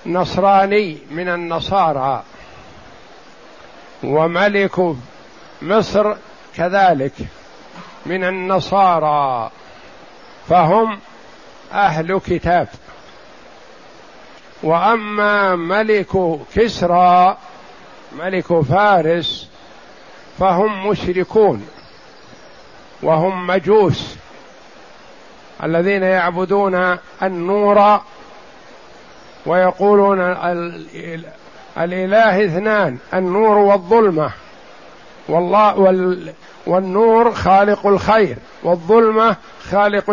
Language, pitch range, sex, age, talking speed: Arabic, 175-205 Hz, male, 60-79, 65 wpm